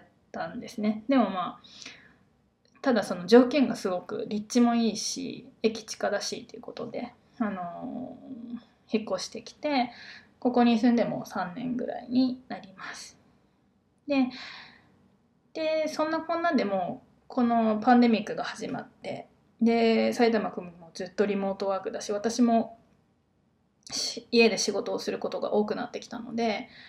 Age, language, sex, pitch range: 20-39, Japanese, female, 210-250 Hz